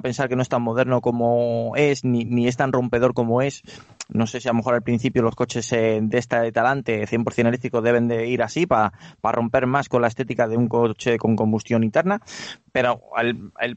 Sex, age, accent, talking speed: male, 20-39, Spanish, 220 wpm